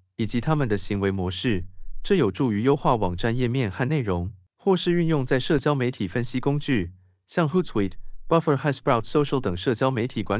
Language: Chinese